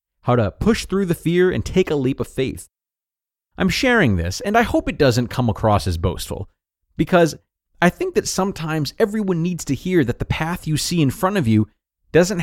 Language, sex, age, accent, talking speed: English, male, 30-49, American, 210 wpm